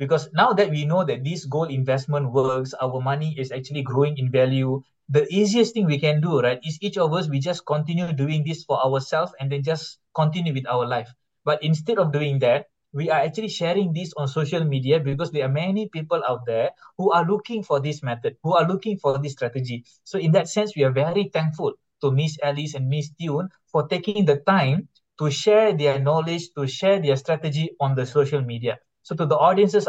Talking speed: 215 wpm